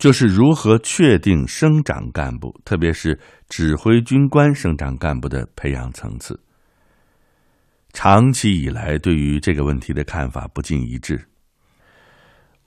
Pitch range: 70-100 Hz